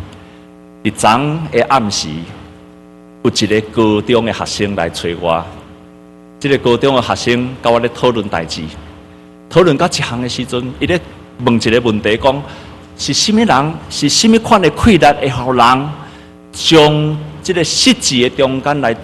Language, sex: Chinese, male